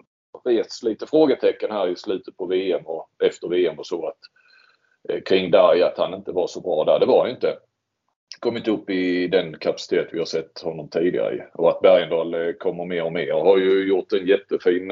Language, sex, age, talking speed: English, male, 30-49, 205 wpm